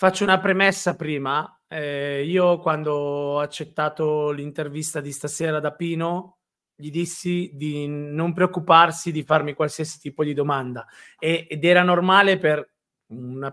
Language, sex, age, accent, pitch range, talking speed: Italian, male, 30-49, native, 140-165 Hz, 135 wpm